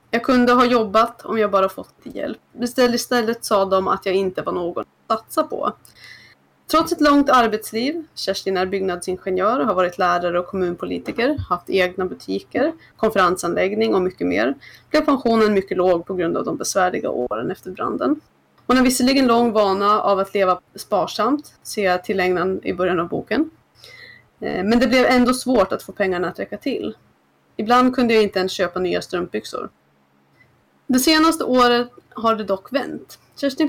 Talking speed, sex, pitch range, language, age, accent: 170 wpm, female, 185-255 Hz, Swedish, 20-39, native